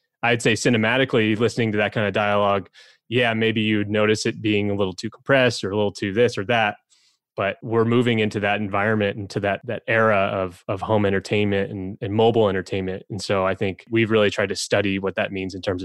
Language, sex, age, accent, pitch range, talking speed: English, male, 20-39, American, 100-120 Hz, 225 wpm